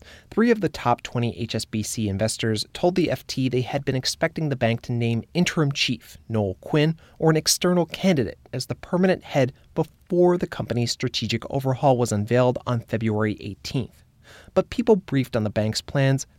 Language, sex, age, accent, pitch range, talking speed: English, male, 30-49, American, 115-155 Hz, 170 wpm